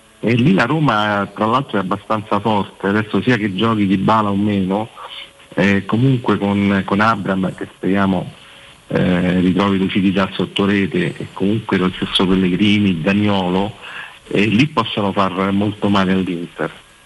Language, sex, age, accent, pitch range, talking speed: Italian, male, 50-69, native, 90-105 Hz, 150 wpm